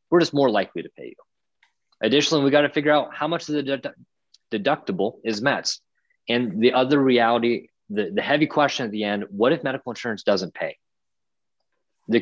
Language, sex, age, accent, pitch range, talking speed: English, male, 20-39, American, 105-140 Hz, 190 wpm